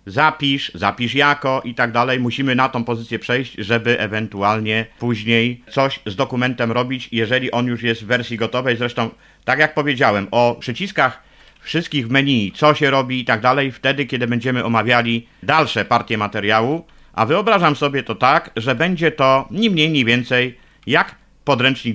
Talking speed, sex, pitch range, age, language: 165 wpm, male, 115-155 Hz, 50-69, Polish